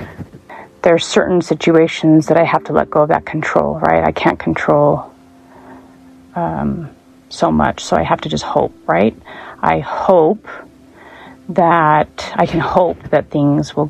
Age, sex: 30-49, female